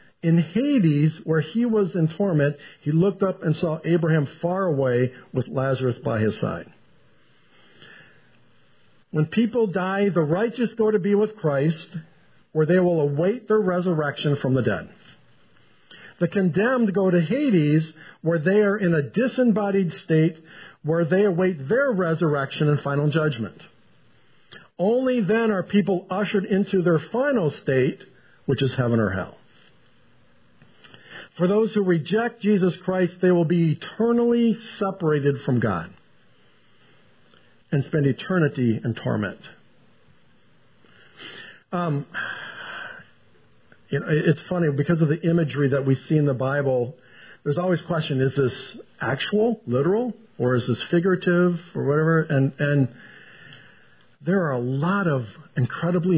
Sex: male